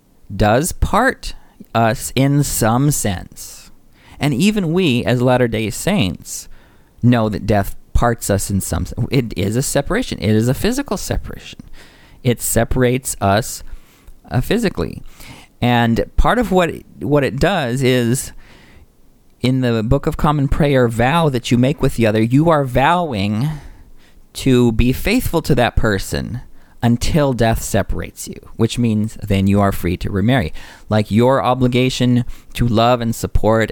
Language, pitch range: English, 100-130 Hz